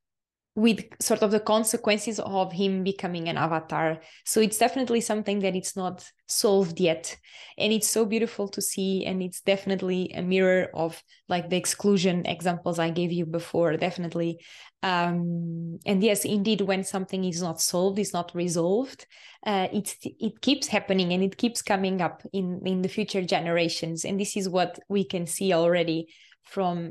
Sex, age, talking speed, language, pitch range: female, 20-39, 165 wpm, English, 175-205 Hz